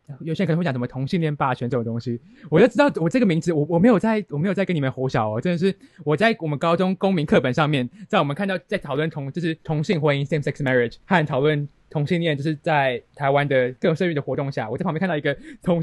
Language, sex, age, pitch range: Chinese, male, 20-39, 140-190 Hz